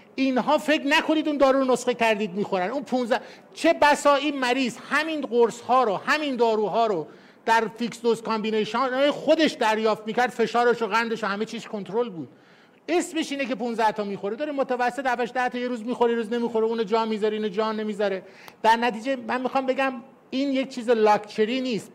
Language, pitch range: Persian, 215-255 Hz